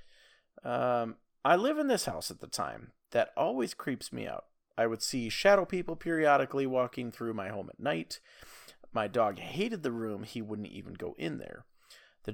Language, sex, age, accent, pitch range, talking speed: English, male, 30-49, American, 110-140 Hz, 185 wpm